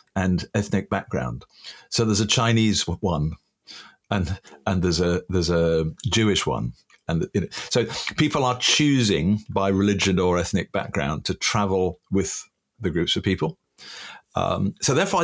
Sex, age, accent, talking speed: male, 50-69, British, 155 wpm